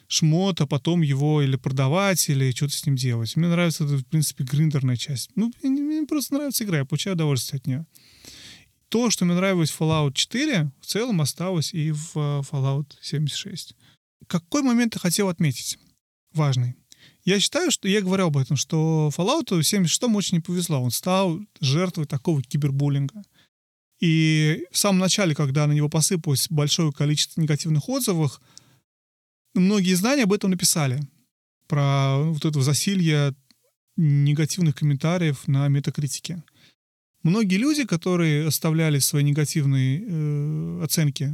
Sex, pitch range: male, 140-180 Hz